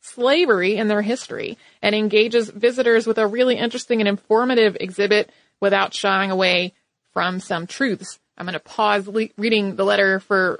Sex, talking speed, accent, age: female, 165 wpm, American, 30-49